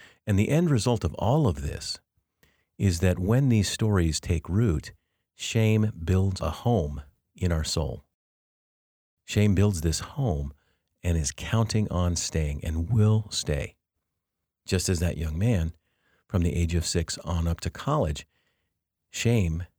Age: 50-69